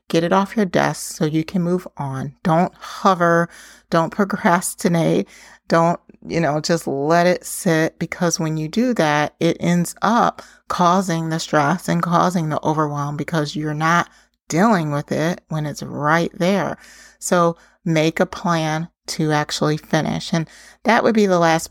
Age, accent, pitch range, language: 30-49, American, 160-195 Hz, English